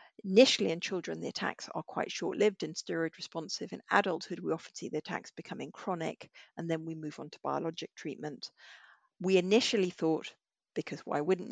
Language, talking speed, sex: English, 170 wpm, female